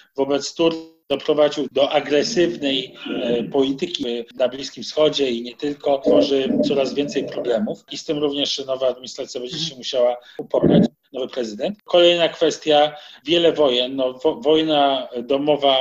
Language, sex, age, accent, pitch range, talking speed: Polish, male, 40-59, native, 135-160 Hz, 140 wpm